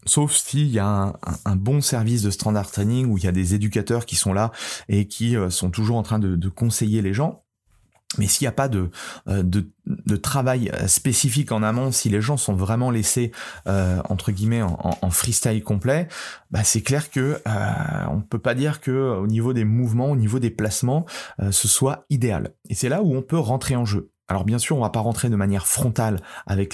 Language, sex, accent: French, male, French